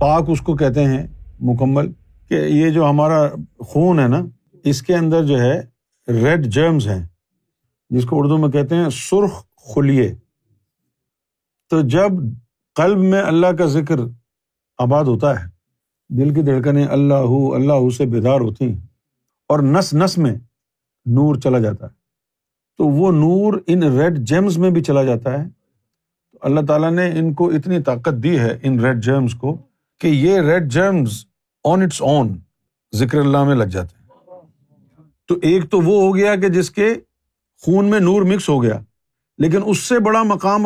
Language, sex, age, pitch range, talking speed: Urdu, male, 50-69, 130-175 Hz, 170 wpm